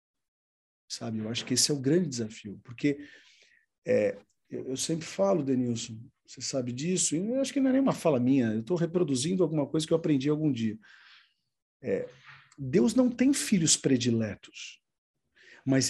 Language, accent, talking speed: Portuguese, Brazilian, 170 wpm